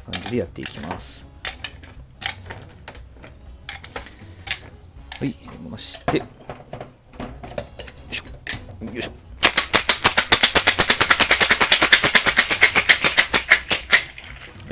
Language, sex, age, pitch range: Japanese, male, 40-59, 85-120 Hz